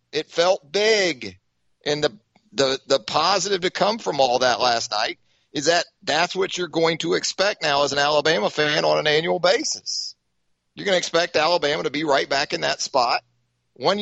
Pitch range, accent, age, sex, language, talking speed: 130-195 Hz, American, 40-59, male, English, 195 wpm